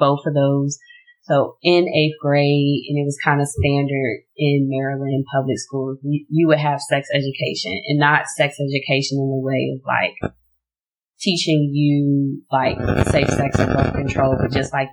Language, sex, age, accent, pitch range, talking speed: English, female, 20-39, American, 135-170 Hz, 175 wpm